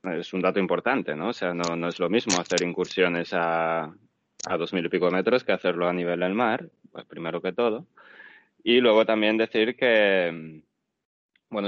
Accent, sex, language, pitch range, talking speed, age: Spanish, male, Spanish, 90-105 Hz, 185 wpm, 20-39